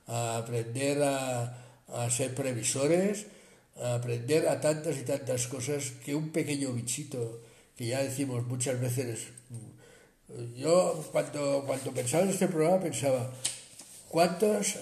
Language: Spanish